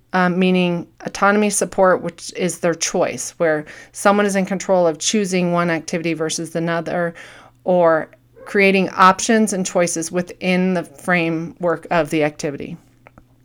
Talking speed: 135 wpm